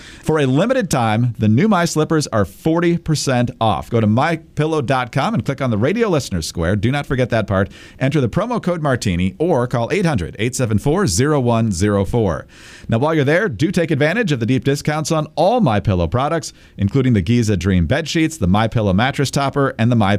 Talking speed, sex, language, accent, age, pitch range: 190 wpm, male, English, American, 50-69, 105-150 Hz